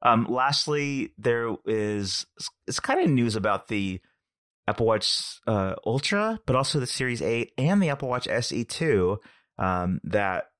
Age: 30-49